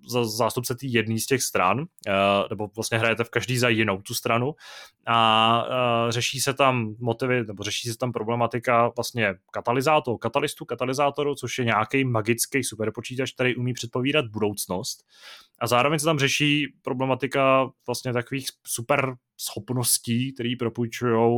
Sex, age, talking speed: male, 20-39, 140 wpm